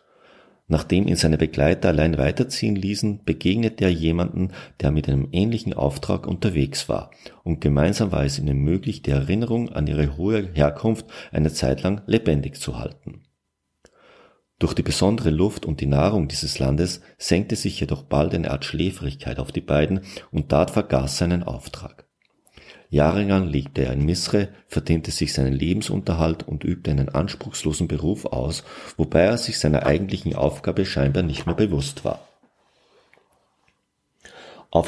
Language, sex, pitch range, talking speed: German, male, 70-100 Hz, 150 wpm